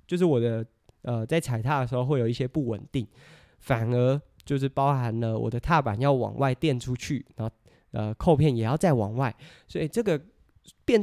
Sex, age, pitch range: male, 20-39, 120-150 Hz